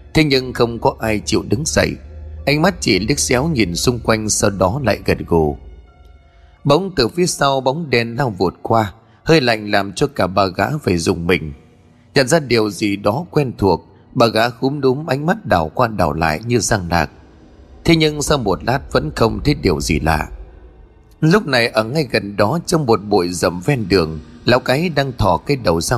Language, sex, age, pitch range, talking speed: Vietnamese, male, 20-39, 85-130 Hz, 210 wpm